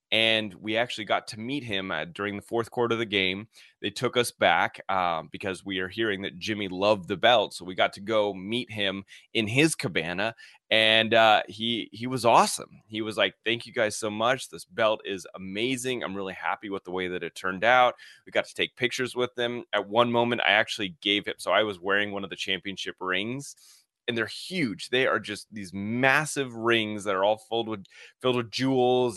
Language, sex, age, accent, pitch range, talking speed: English, male, 30-49, American, 105-125 Hz, 220 wpm